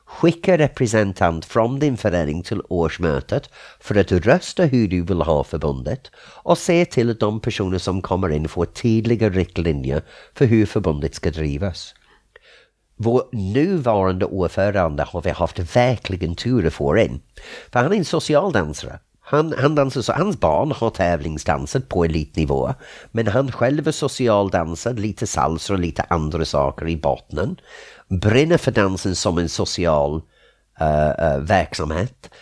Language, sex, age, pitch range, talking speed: Swedish, male, 50-69, 85-120 Hz, 145 wpm